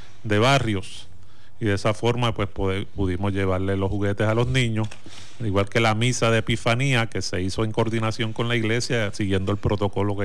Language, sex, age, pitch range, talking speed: Spanish, male, 30-49, 100-115 Hz, 195 wpm